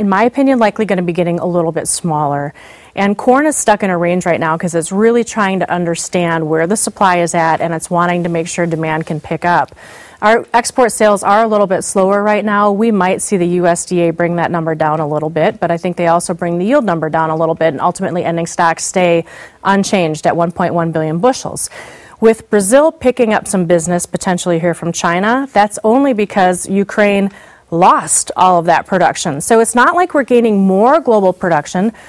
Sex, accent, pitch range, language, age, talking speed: female, American, 170-215 Hz, English, 30-49, 215 wpm